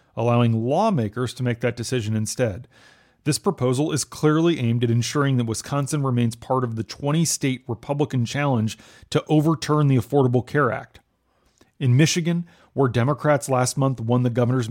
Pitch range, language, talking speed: 115-145 Hz, English, 155 wpm